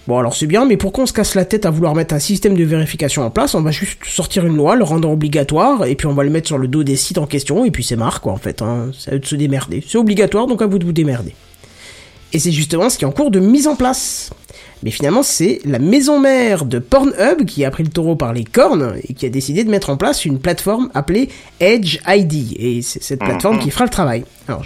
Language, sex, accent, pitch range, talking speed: French, male, French, 130-195 Hz, 275 wpm